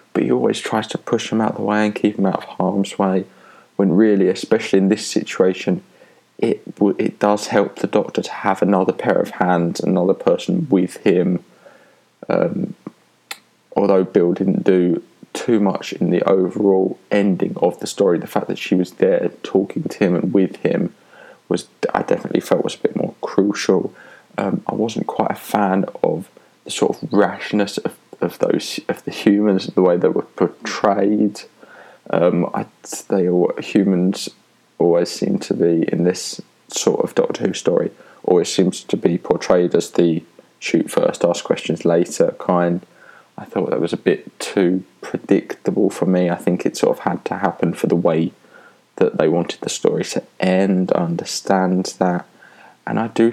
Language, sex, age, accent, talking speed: English, male, 20-39, British, 180 wpm